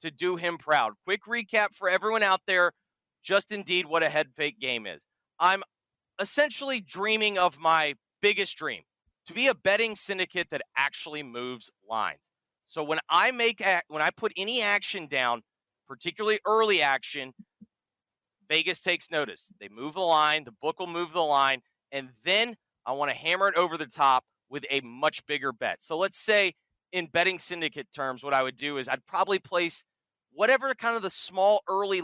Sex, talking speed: male, 180 wpm